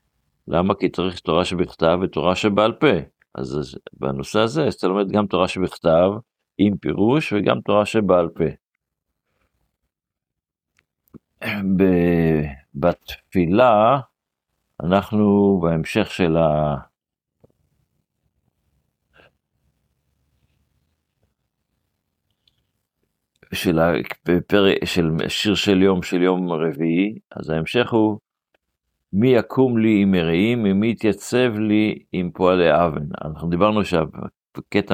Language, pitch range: Hebrew, 80-105 Hz